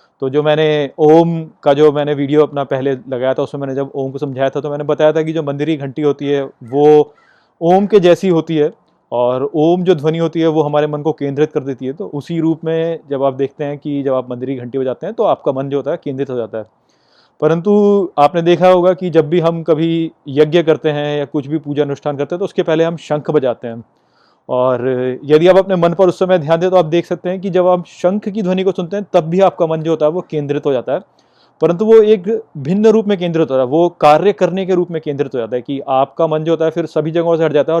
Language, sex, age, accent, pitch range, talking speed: Hindi, male, 30-49, native, 145-180 Hz, 265 wpm